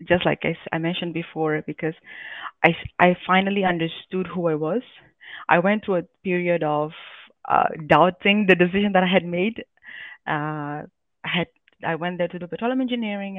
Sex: female